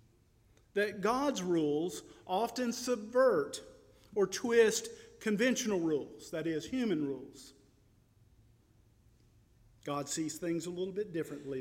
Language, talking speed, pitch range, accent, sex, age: English, 105 wpm, 125-200 Hz, American, male, 50-69